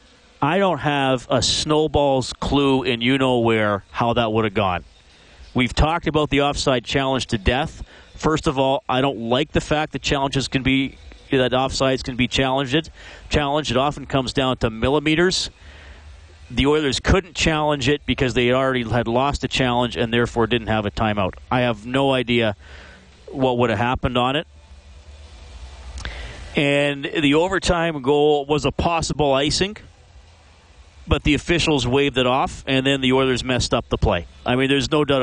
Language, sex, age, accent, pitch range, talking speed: English, male, 40-59, American, 115-140 Hz, 170 wpm